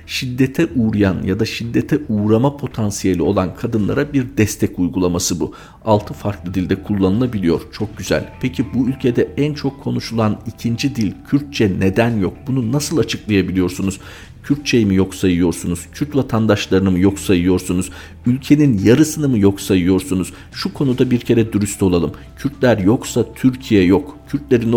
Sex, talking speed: male, 140 wpm